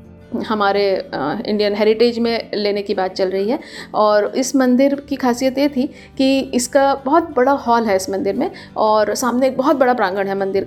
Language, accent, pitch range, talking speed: Hindi, native, 200-255 Hz, 190 wpm